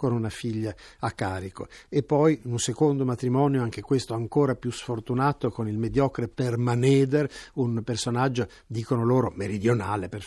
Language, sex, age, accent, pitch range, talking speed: Italian, male, 60-79, native, 110-135 Hz, 145 wpm